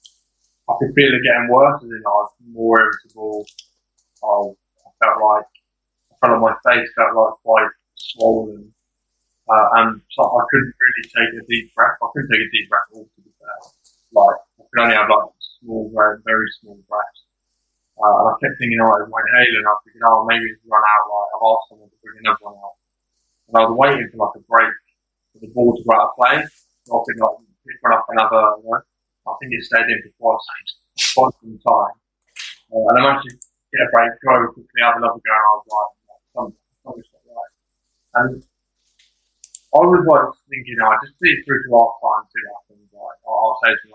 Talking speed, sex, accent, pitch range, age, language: 225 wpm, male, British, 105-120 Hz, 20-39, English